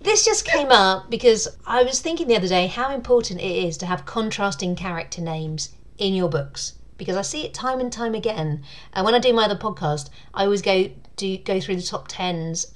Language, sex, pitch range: English, female, 165-220 Hz